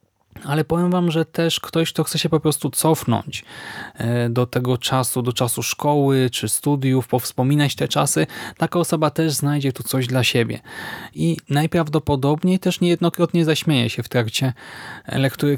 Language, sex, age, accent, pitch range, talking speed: Polish, male, 20-39, native, 125-150 Hz, 155 wpm